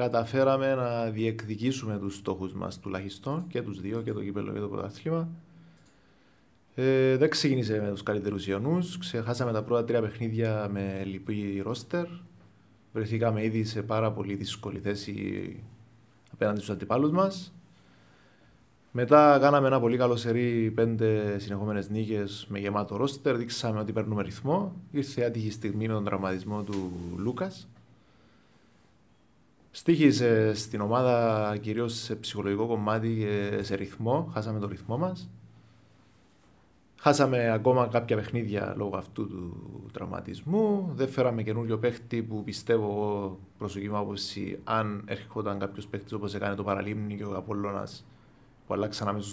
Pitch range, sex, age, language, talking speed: 100-125 Hz, male, 20-39, Greek, 135 wpm